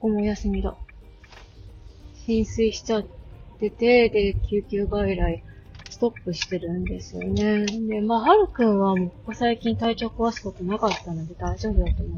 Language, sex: Japanese, female